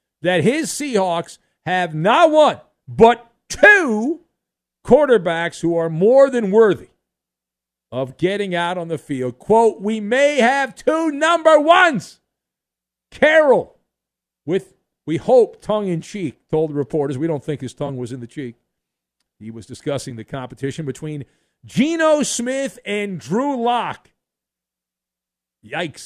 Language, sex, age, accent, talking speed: English, male, 50-69, American, 130 wpm